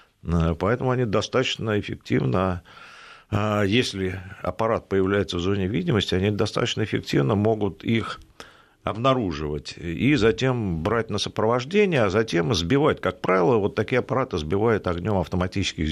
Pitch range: 90-120 Hz